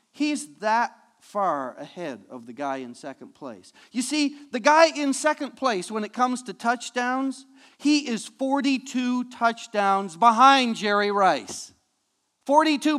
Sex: male